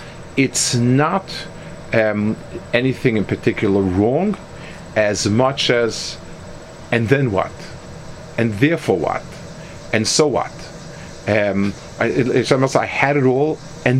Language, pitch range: English, 110-150 Hz